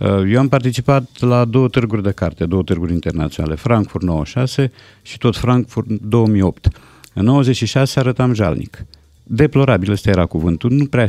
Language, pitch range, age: Romanian, 100-140 Hz, 50-69